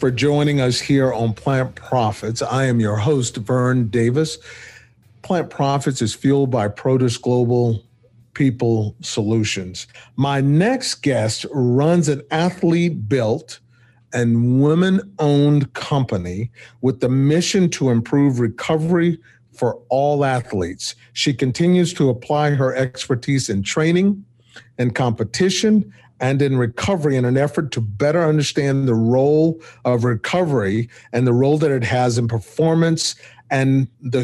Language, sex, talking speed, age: English, male, 130 wpm, 50-69